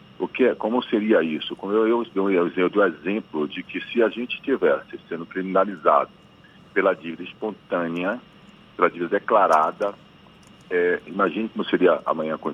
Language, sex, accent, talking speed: Portuguese, male, Brazilian, 165 wpm